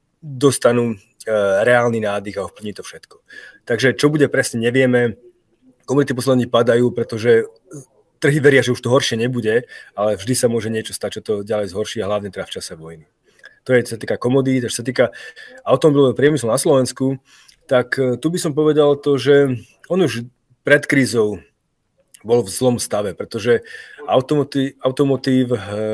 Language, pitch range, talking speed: Slovak, 110-130 Hz, 160 wpm